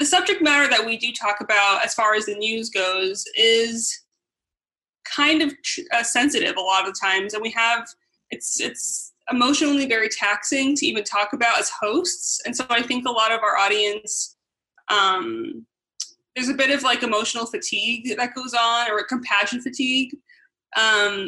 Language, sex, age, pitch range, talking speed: English, female, 20-39, 215-285 Hz, 170 wpm